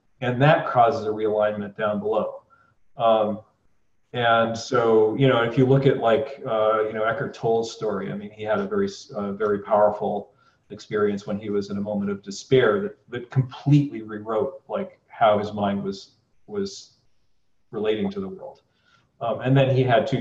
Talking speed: 180 wpm